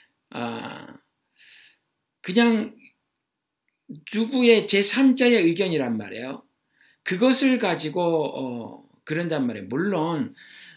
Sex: male